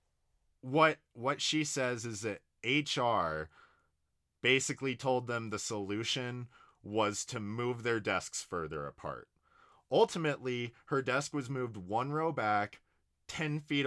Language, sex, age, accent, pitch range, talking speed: English, male, 30-49, American, 95-125 Hz, 125 wpm